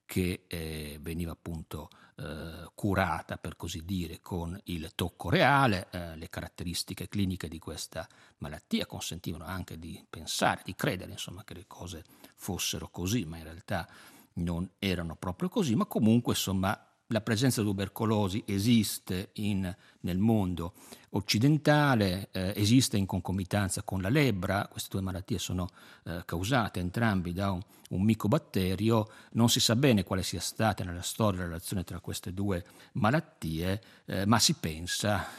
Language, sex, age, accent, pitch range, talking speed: Italian, male, 50-69, native, 85-110 Hz, 150 wpm